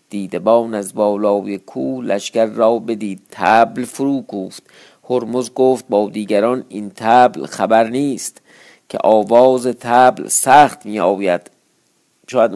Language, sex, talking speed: Persian, male, 115 wpm